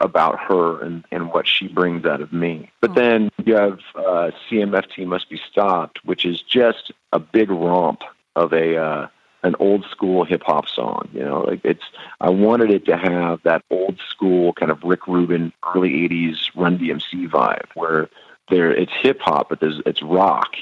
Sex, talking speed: male, 185 wpm